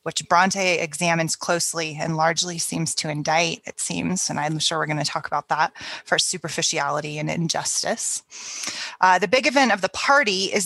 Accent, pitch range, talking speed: American, 165-195 Hz, 180 wpm